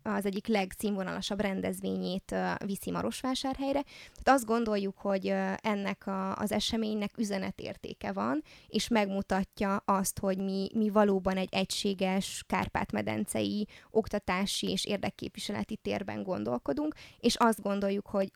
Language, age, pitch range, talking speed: Hungarian, 20-39, 190-210 Hz, 115 wpm